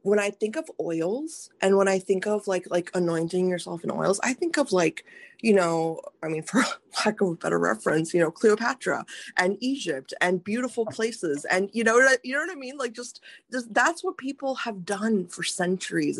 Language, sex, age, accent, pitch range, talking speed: English, female, 20-39, American, 170-210 Hz, 210 wpm